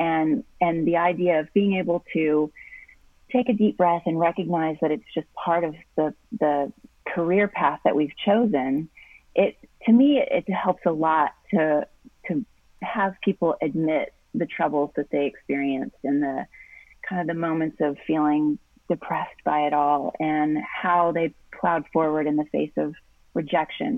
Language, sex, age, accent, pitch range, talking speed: English, female, 30-49, American, 150-180 Hz, 165 wpm